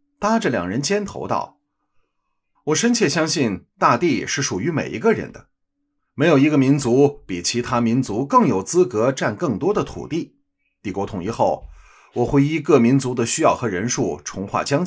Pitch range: 95-155 Hz